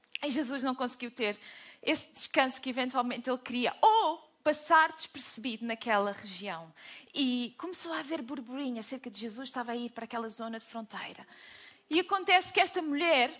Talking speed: 165 wpm